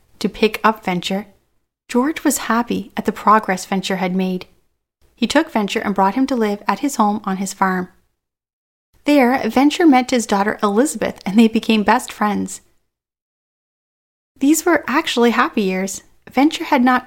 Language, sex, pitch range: English, female, 205-250 Hz